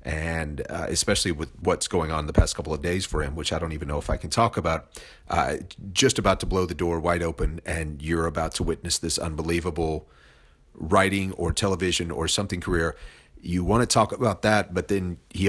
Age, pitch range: 40-59, 85-100 Hz